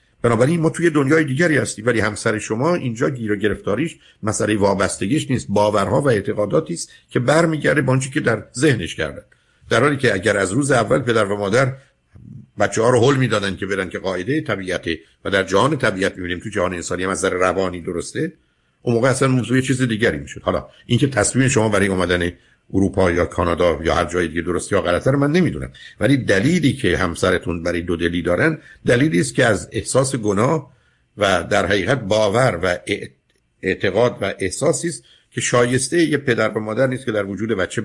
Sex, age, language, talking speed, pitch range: male, 50-69, Persian, 185 wpm, 95-130 Hz